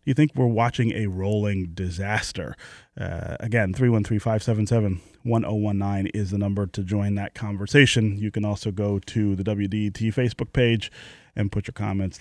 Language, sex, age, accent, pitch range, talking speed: English, male, 30-49, American, 105-125 Hz, 145 wpm